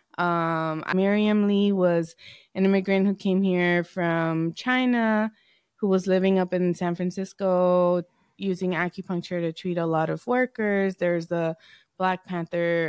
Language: English